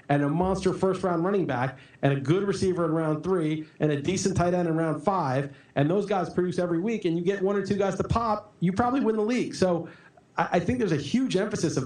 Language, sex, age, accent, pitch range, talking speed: English, male, 40-59, American, 155-200 Hz, 250 wpm